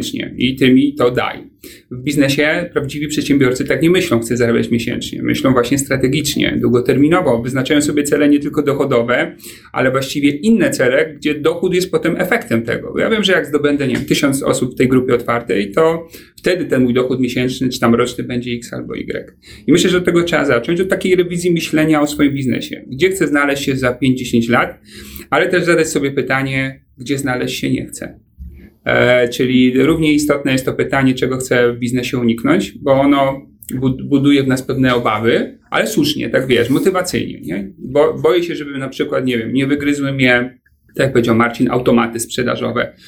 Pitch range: 125-150 Hz